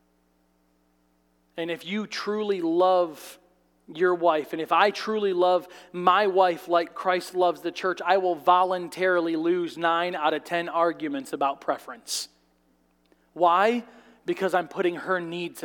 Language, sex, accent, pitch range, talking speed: English, male, American, 155-210 Hz, 140 wpm